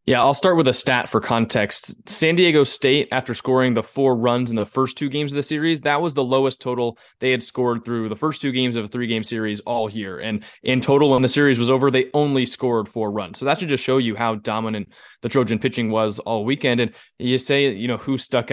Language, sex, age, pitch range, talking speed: English, male, 20-39, 115-135 Hz, 250 wpm